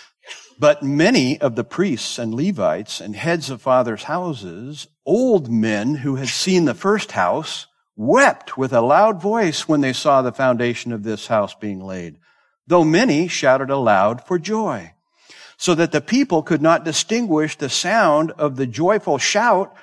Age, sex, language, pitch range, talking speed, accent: 60-79, male, English, 130-200 Hz, 165 wpm, American